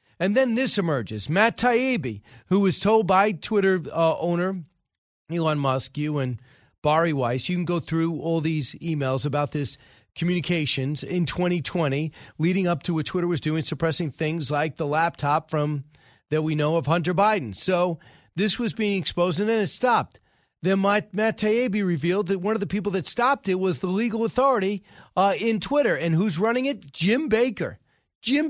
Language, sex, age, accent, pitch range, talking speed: English, male, 40-59, American, 160-215 Hz, 180 wpm